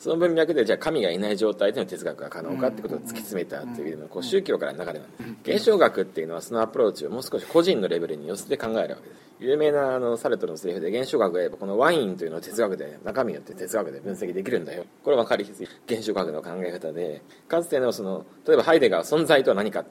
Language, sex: Japanese, male